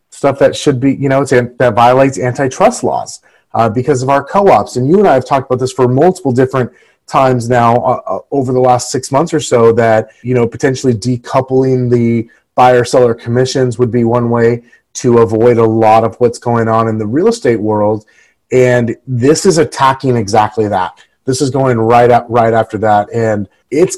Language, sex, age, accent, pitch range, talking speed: English, male, 30-49, American, 115-140 Hz, 195 wpm